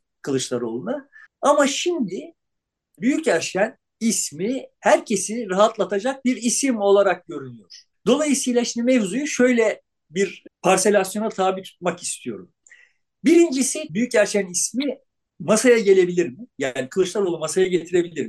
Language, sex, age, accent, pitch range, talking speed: Turkish, male, 50-69, native, 180-260 Hz, 105 wpm